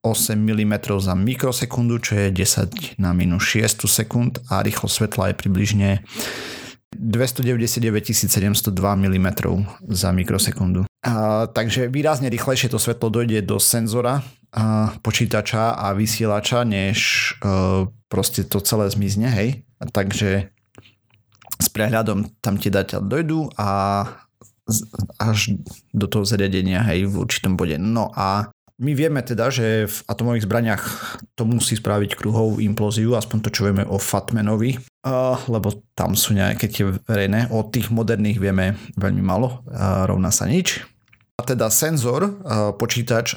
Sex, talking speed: male, 130 wpm